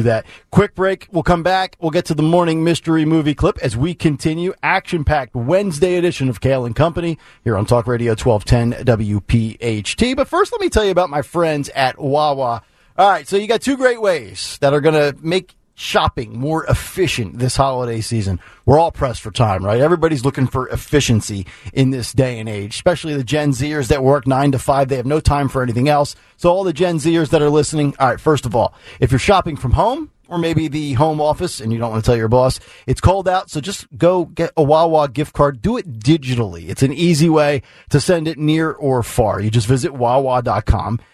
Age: 40-59